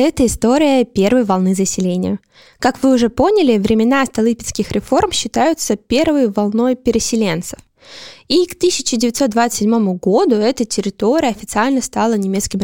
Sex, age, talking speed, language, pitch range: female, 20-39, 120 wpm, Russian, 200-255 Hz